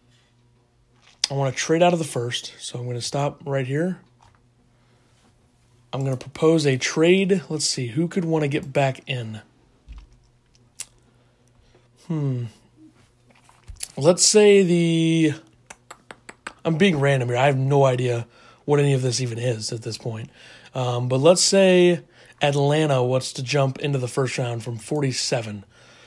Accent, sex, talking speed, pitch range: American, male, 150 wpm, 120-160 Hz